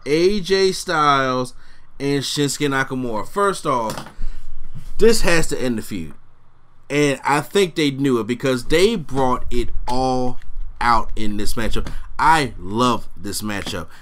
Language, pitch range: English, 120-150 Hz